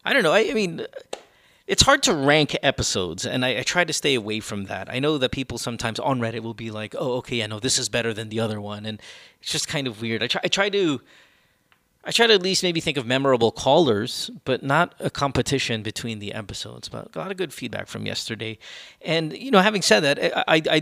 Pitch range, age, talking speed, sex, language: 115-145 Hz, 30-49, 250 wpm, male, English